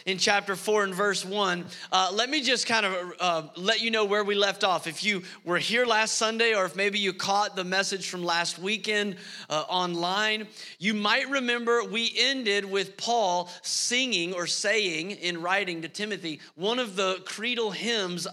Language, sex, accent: English, male, American